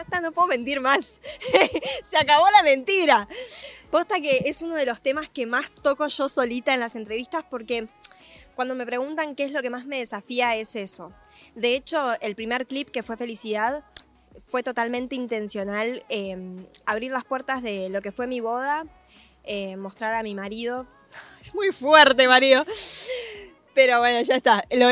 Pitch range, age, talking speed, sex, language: 225-275 Hz, 20-39, 175 wpm, female, Spanish